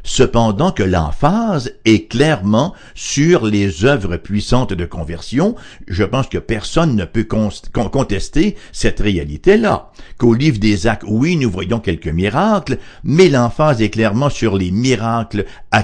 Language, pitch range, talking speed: English, 100-145 Hz, 140 wpm